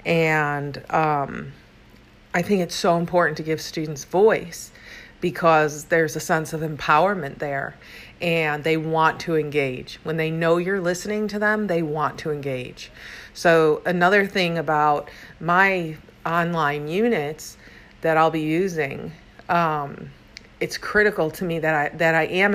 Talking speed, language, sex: 145 wpm, English, female